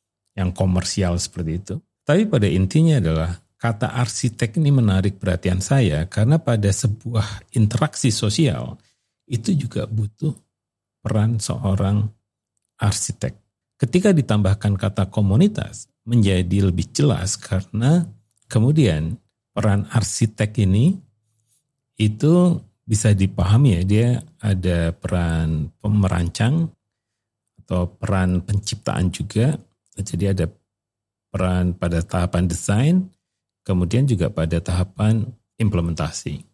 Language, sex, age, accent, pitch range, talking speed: Indonesian, male, 50-69, native, 95-130 Hz, 100 wpm